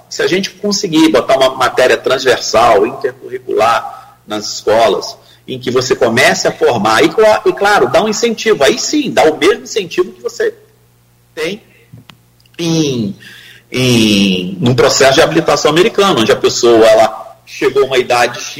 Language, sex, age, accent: Portuguese, male, 40-59, Brazilian